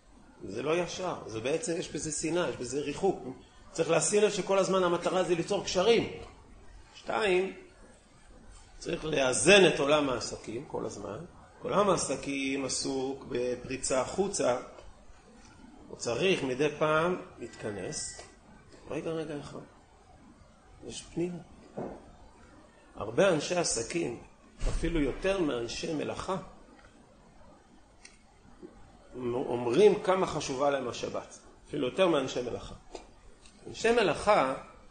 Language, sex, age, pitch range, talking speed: Hebrew, male, 40-59, 140-210 Hz, 105 wpm